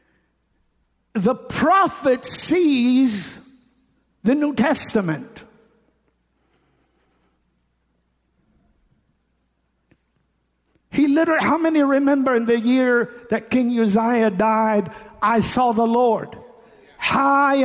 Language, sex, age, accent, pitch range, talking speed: English, male, 50-69, American, 230-275 Hz, 80 wpm